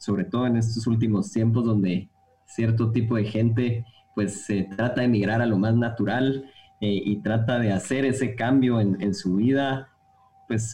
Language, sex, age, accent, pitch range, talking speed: Spanish, male, 20-39, Mexican, 105-130 Hz, 180 wpm